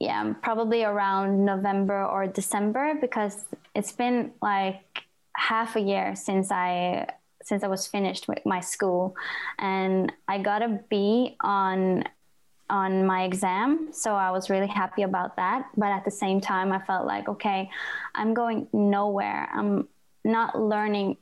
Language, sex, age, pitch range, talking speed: English, female, 20-39, 190-215 Hz, 150 wpm